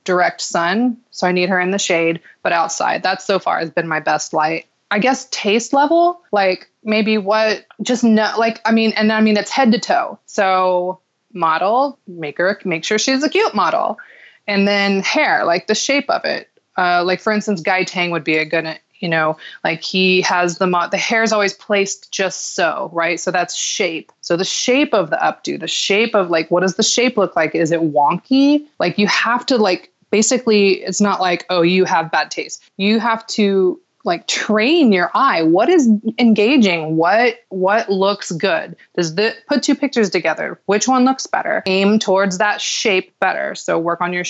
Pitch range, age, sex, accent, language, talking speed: 180-225 Hz, 20-39, female, American, English, 205 wpm